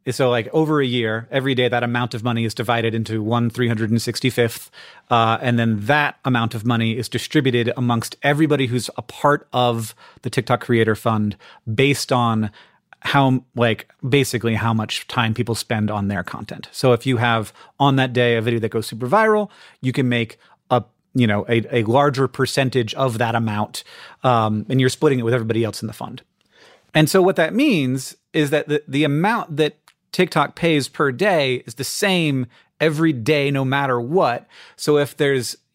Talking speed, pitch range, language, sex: 190 wpm, 115-150 Hz, English, male